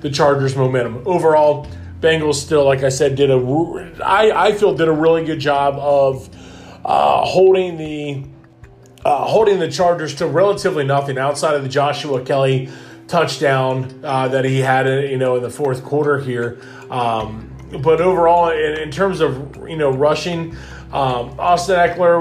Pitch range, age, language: 130-155 Hz, 30-49, English